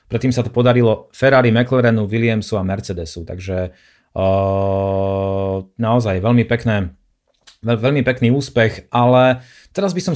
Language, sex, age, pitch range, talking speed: Slovak, male, 30-49, 105-125 Hz, 130 wpm